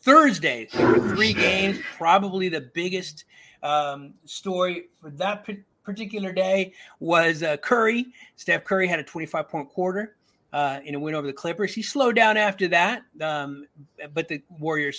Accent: American